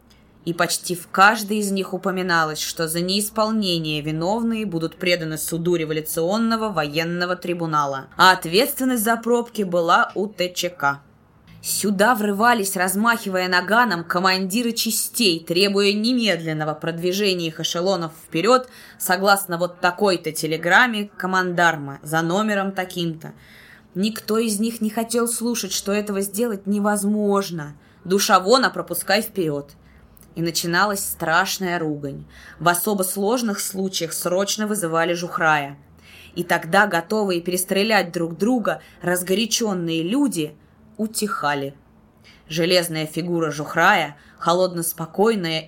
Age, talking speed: 20-39, 105 wpm